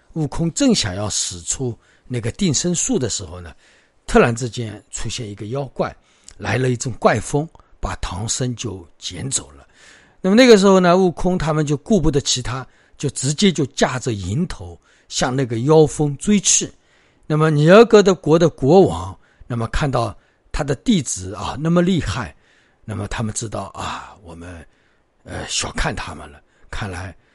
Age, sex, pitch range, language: 50-69, male, 100-155 Hz, Chinese